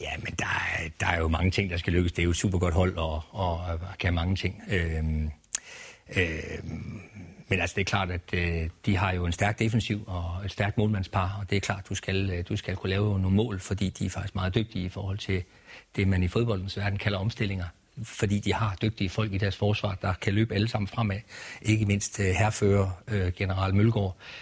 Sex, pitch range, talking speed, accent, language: male, 95-110 Hz, 220 wpm, native, Danish